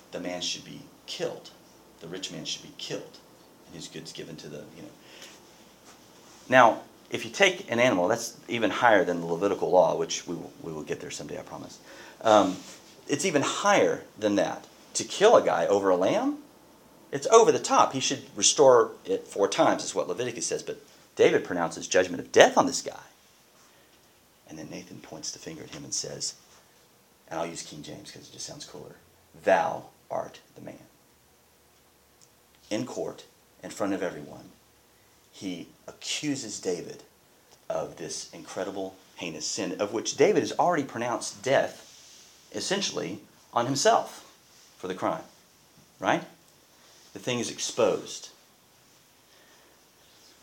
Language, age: English, 40-59